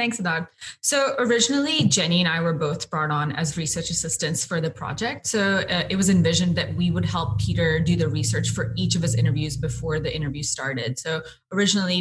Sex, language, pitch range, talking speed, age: female, English, 150-175 Hz, 205 wpm, 20-39